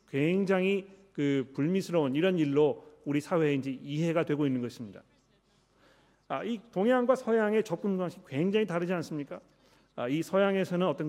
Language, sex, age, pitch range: Korean, male, 40-59, 145-190 Hz